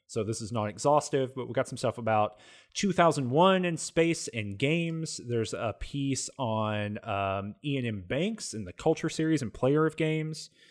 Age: 30-49